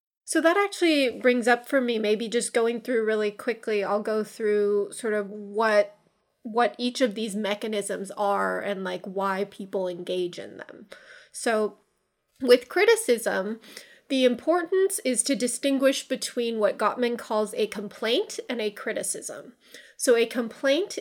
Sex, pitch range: female, 200-250 Hz